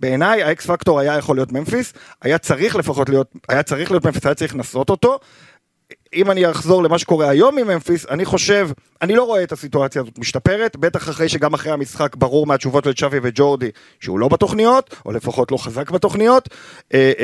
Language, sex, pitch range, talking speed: Hebrew, male, 135-185 Hz, 185 wpm